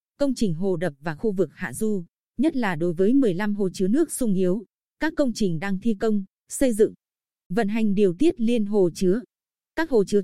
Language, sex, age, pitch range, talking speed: Vietnamese, female, 20-39, 185-235 Hz, 215 wpm